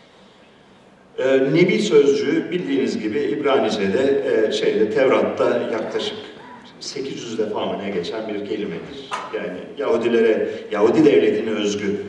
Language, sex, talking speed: Turkish, male, 95 wpm